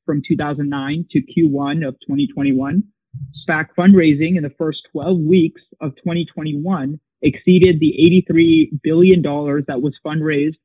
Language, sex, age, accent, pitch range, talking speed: English, male, 20-39, American, 145-175 Hz, 125 wpm